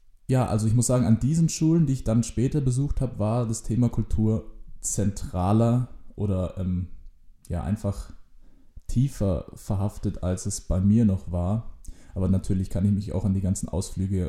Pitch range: 90-105 Hz